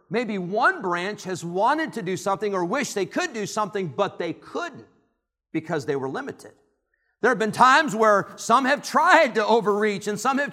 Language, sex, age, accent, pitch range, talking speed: English, male, 50-69, American, 170-260 Hz, 195 wpm